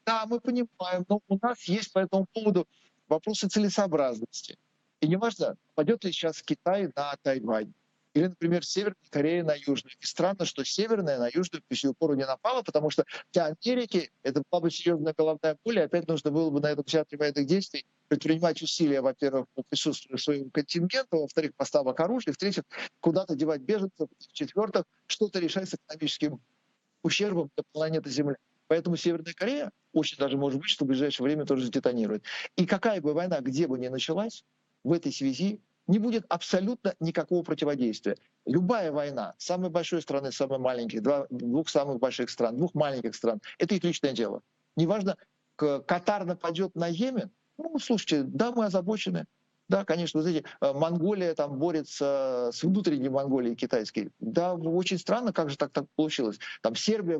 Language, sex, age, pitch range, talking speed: Russian, male, 50-69, 145-190 Hz, 165 wpm